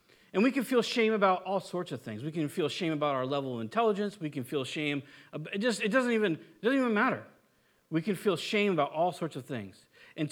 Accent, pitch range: American, 150-220 Hz